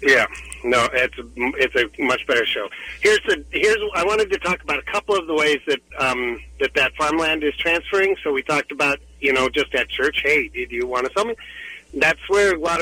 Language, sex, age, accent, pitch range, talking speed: English, male, 50-69, American, 135-215 Hz, 230 wpm